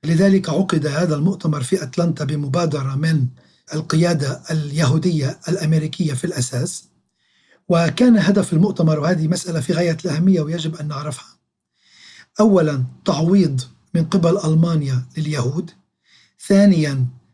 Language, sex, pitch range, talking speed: Arabic, male, 155-185 Hz, 105 wpm